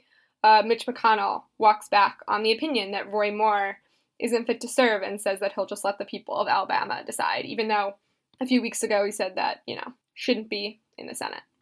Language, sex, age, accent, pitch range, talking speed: English, female, 10-29, American, 210-245 Hz, 215 wpm